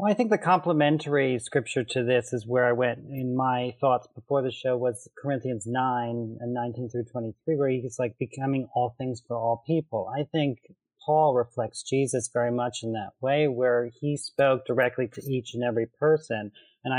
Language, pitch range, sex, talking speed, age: English, 120-140 Hz, male, 190 wpm, 30-49